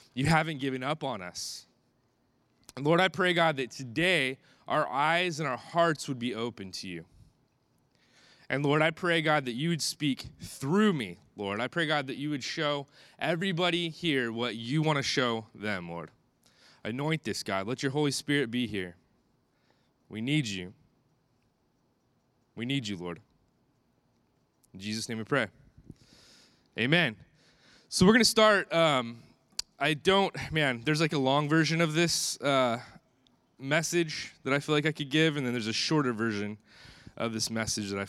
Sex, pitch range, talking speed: male, 115-160 Hz, 170 wpm